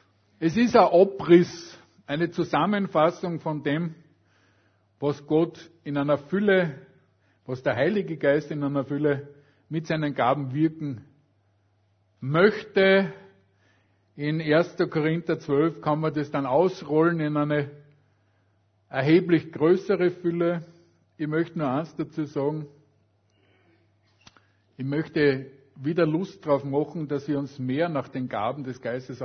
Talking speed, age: 125 wpm, 50-69